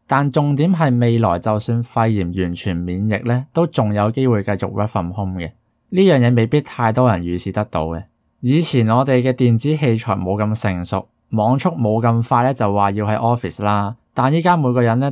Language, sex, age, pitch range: Chinese, male, 20-39, 100-130 Hz